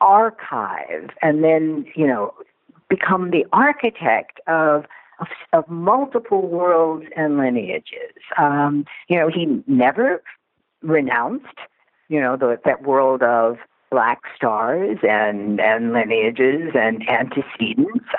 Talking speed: 110 wpm